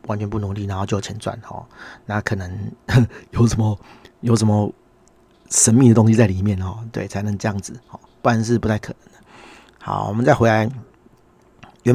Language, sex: Chinese, male